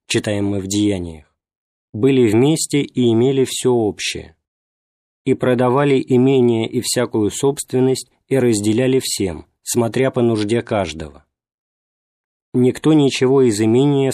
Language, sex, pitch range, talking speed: Russian, male, 110-130 Hz, 115 wpm